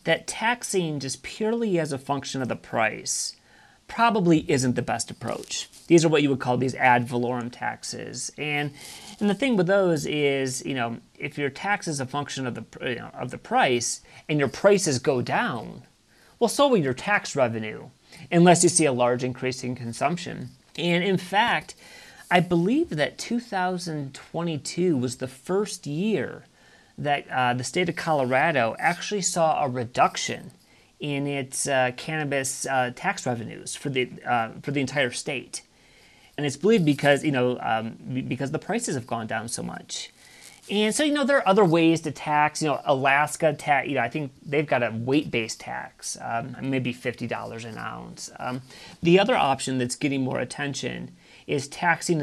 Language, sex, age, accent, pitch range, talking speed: English, male, 30-49, American, 125-175 Hz, 180 wpm